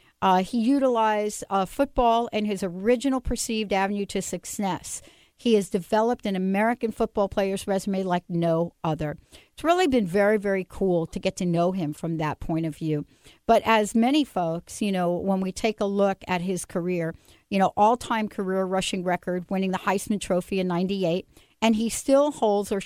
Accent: American